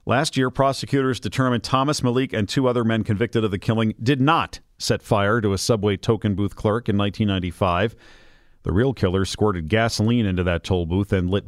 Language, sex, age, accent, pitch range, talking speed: English, male, 40-59, American, 105-140 Hz, 195 wpm